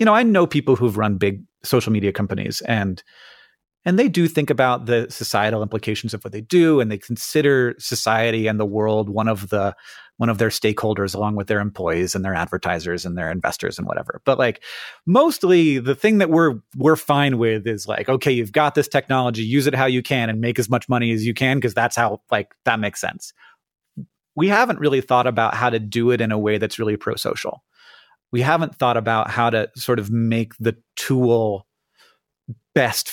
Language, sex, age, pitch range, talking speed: English, male, 30-49, 115-155 Hz, 210 wpm